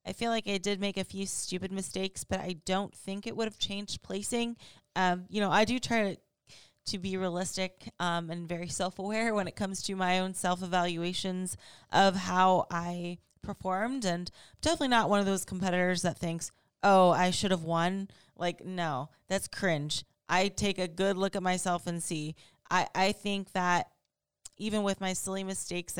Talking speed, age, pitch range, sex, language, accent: 185 wpm, 20-39, 175-205 Hz, female, English, American